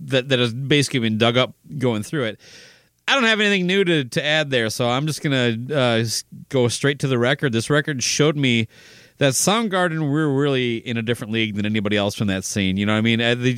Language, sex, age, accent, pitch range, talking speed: English, male, 30-49, American, 110-145 Hz, 240 wpm